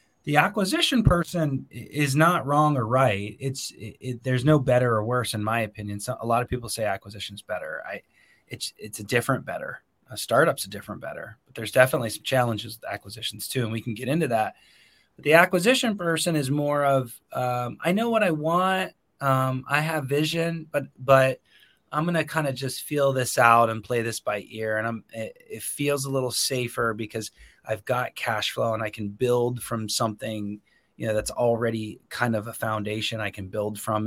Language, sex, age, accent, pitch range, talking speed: English, male, 30-49, American, 110-135 Hz, 205 wpm